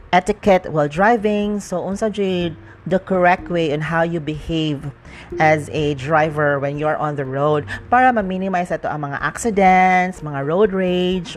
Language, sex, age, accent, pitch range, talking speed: English, female, 40-59, Filipino, 150-195 Hz, 160 wpm